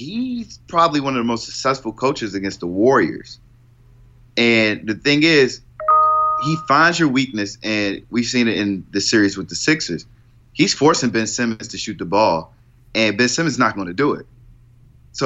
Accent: American